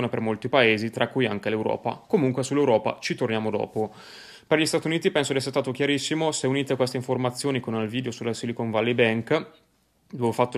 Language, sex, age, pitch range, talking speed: Italian, male, 20-39, 115-135 Hz, 200 wpm